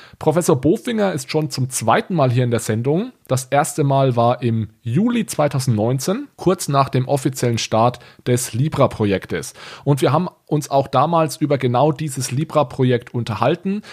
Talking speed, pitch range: 155 wpm, 125-155 Hz